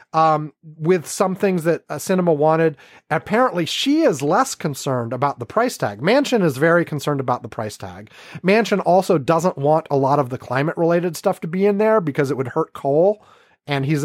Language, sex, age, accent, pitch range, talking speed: English, male, 30-49, American, 150-200 Hz, 195 wpm